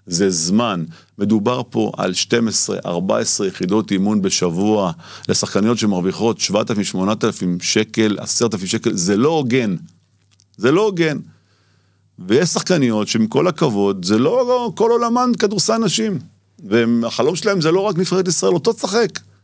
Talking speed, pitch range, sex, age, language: 135 wpm, 100-140 Hz, male, 50-69, Hebrew